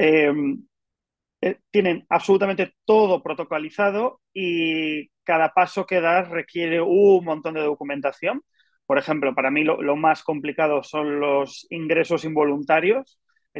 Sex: male